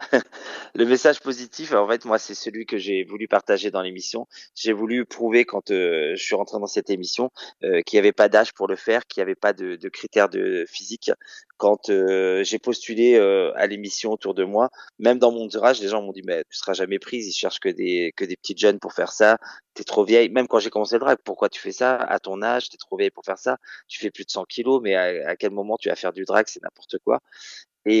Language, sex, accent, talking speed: French, male, French, 260 wpm